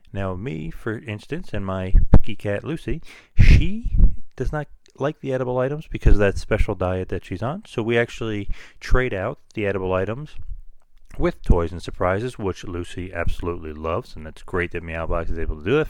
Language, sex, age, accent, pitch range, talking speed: English, male, 30-49, American, 85-115 Hz, 190 wpm